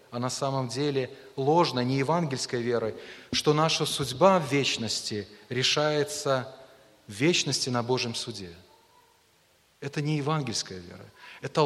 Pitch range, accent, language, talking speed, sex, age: 125-155 Hz, native, Russian, 125 wpm, male, 30-49